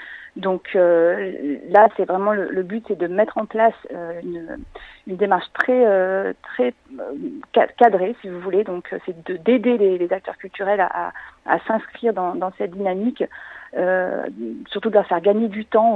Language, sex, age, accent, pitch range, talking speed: French, female, 40-59, French, 185-220 Hz, 190 wpm